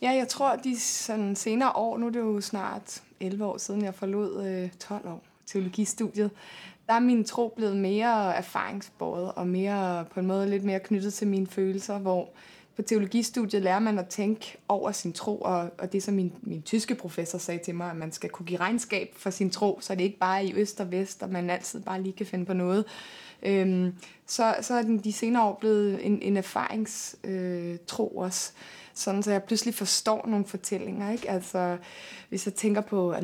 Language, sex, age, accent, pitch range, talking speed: Danish, female, 20-39, native, 190-225 Hz, 210 wpm